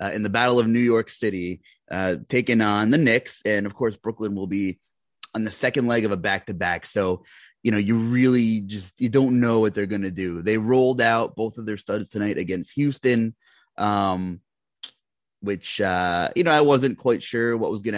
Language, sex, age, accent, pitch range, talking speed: English, male, 30-49, American, 100-130 Hz, 205 wpm